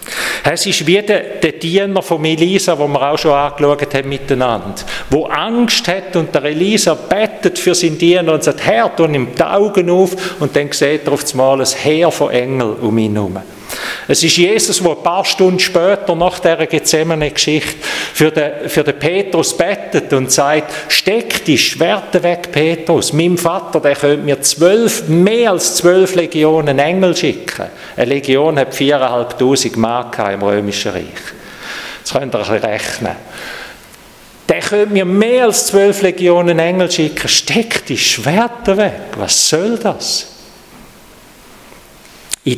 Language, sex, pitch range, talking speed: German, male, 135-180 Hz, 160 wpm